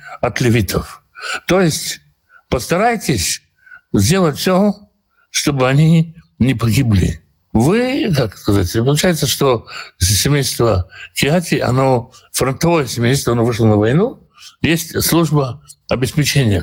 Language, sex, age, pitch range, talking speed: Russian, male, 60-79, 110-165 Hz, 95 wpm